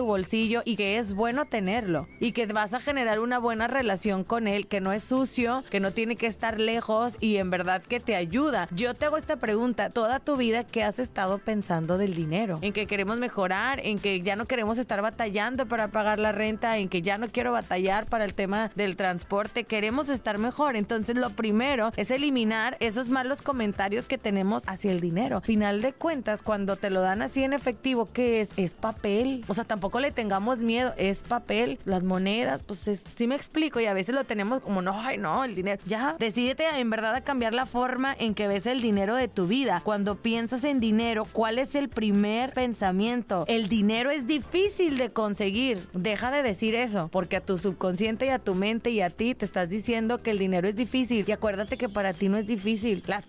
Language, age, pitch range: Spanish, 30-49, 200-245 Hz